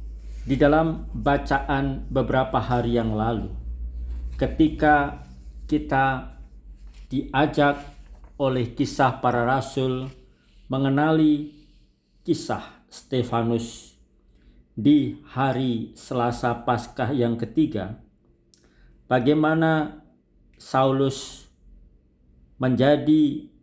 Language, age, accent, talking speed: Indonesian, 50-69, native, 65 wpm